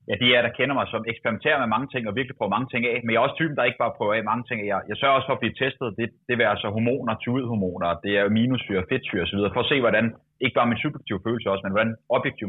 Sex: male